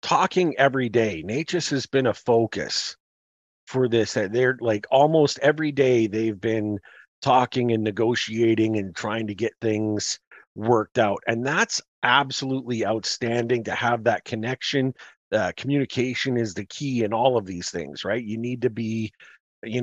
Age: 40-59